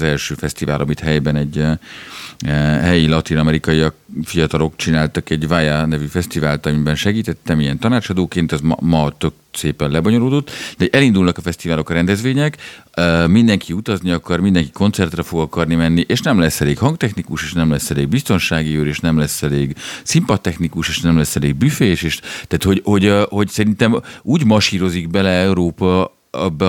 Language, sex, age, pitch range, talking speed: Hungarian, male, 50-69, 80-100 Hz, 165 wpm